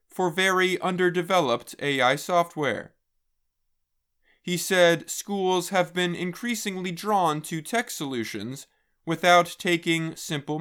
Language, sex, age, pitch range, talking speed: English, male, 20-39, 155-195 Hz, 100 wpm